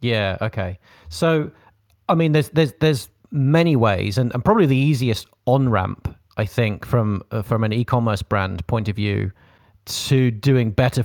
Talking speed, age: 170 wpm, 30-49